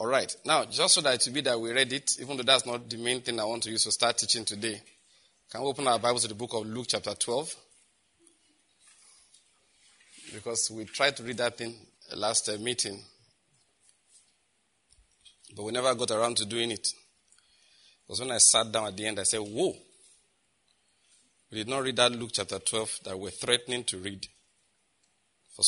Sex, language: male, English